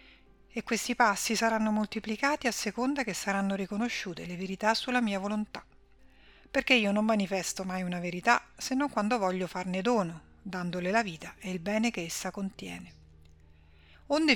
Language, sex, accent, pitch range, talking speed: Italian, female, native, 185-230 Hz, 160 wpm